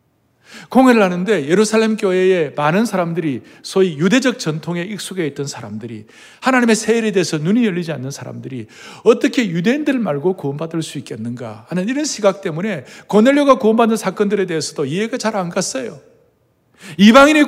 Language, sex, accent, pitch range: Korean, male, native, 185-260 Hz